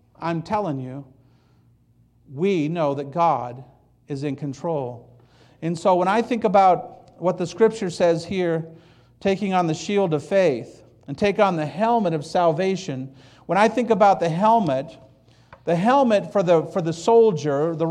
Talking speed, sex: 160 wpm, male